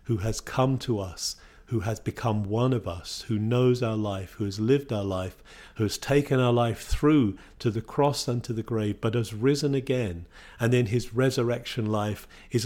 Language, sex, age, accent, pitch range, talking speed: English, male, 50-69, British, 95-120 Hz, 205 wpm